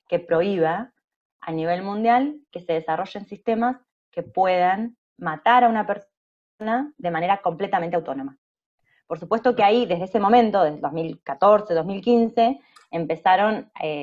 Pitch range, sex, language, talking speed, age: 160-225 Hz, female, Spanish, 130 wpm, 20-39